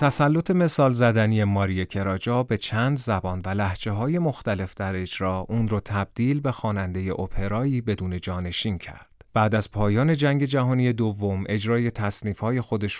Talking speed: 150 wpm